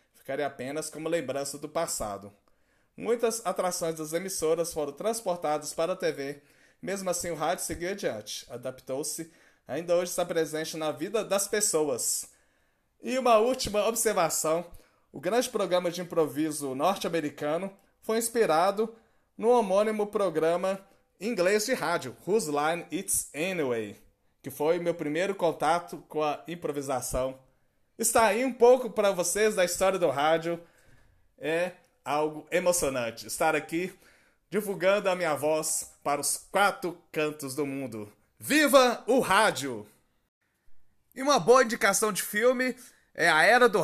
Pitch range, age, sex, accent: 155-200 Hz, 20-39, male, Brazilian